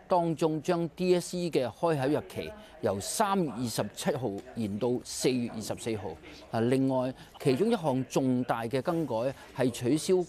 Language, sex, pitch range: Chinese, male, 110-165 Hz